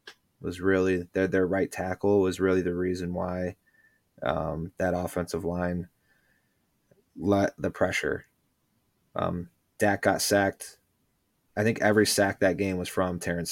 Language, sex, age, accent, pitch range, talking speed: English, male, 20-39, American, 90-100 Hz, 140 wpm